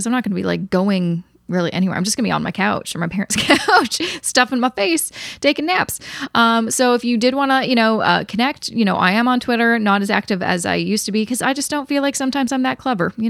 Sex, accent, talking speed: female, American, 275 wpm